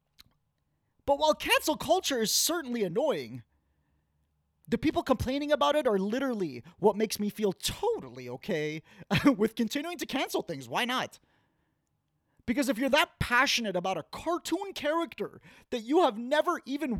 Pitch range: 195-285 Hz